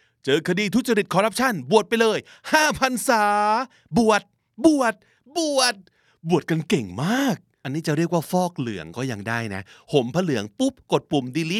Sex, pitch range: male, 140-220 Hz